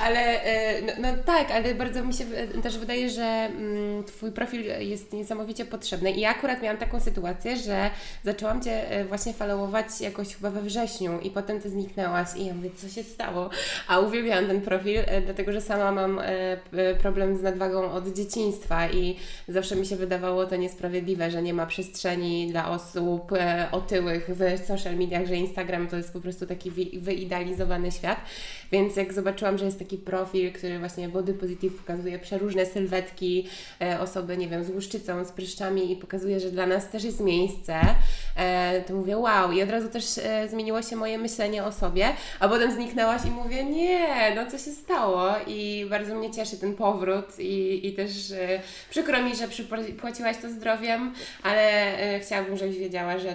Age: 20-39